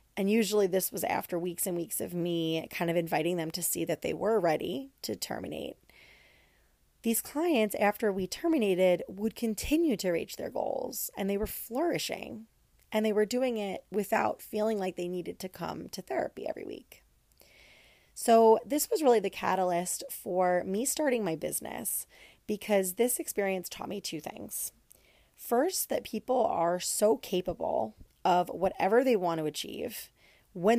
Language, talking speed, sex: English, 165 wpm, female